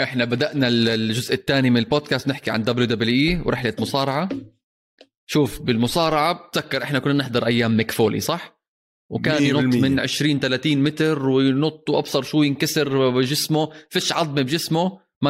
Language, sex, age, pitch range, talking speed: Arabic, male, 20-39, 115-150 Hz, 150 wpm